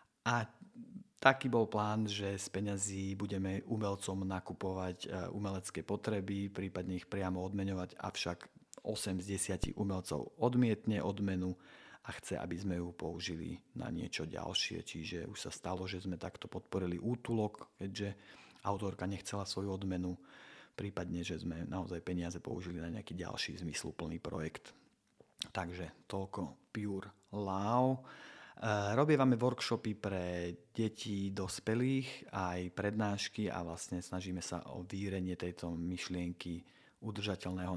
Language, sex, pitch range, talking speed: Slovak, male, 90-100 Hz, 120 wpm